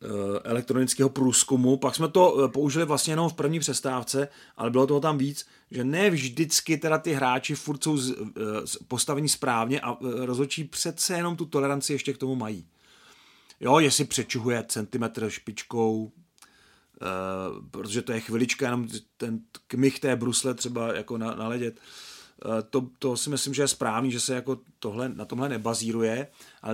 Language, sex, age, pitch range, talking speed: Czech, male, 30-49, 125-150 Hz, 150 wpm